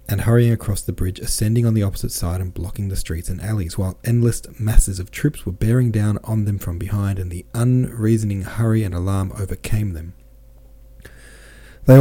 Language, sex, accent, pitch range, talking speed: English, male, Australian, 95-115 Hz, 185 wpm